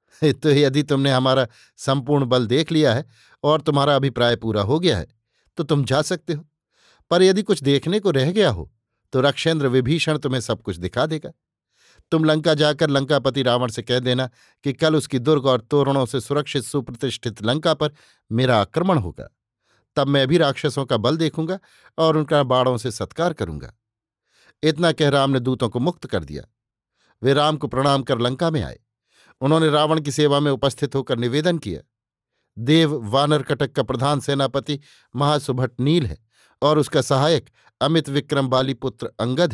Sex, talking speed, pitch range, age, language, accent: male, 175 wpm, 130-155 Hz, 50-69, Hindi, native